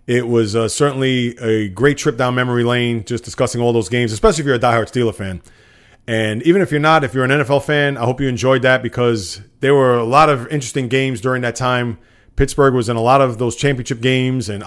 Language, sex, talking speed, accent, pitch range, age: English, male, 235 wpm, American, 110-135 Hz, 30-49